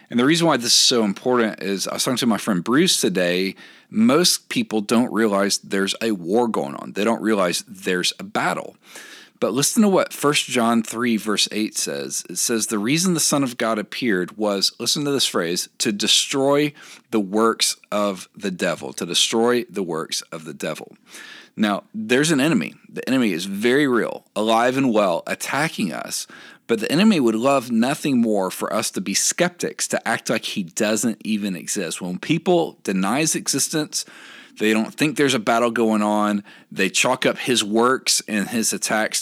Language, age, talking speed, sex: English, 40-59, 190 wpm, male